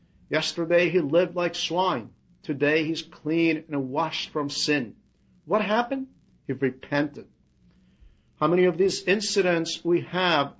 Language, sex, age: English, male, 50-69